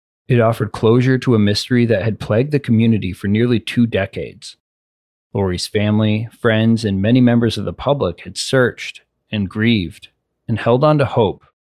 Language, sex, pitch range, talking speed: English, male, 95-120 Hz, 170 wpm